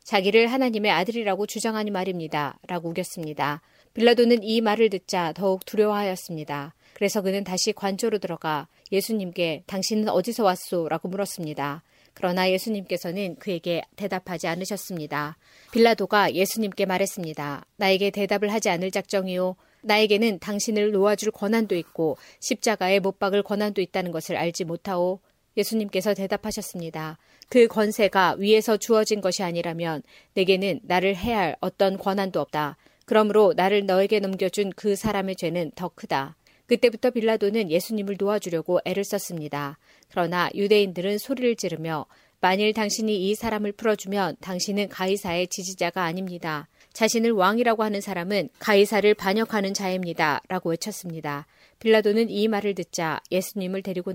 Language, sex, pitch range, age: Korean, female, 175-210 Hz, 30-49